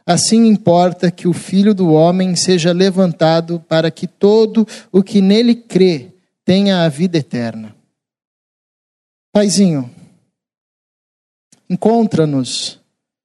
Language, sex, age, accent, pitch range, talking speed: Portuguese, male, 50-69, Brazilian, 165-200 Hz, 100 wpm